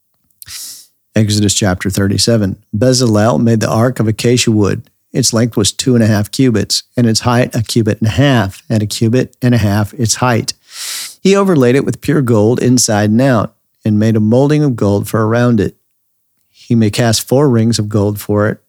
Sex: male